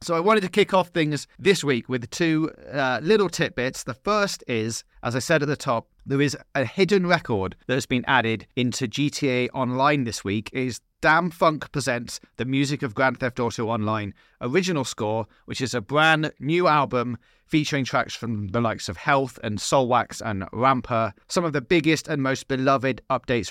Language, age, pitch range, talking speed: English, 30-49, 115-150 Hz, 195 wpm